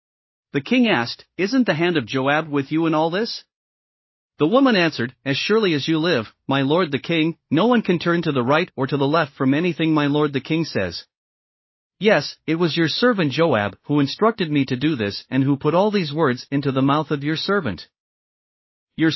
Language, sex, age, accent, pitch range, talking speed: English, male, 40-59, American, 135-175 Hz, 215 wpm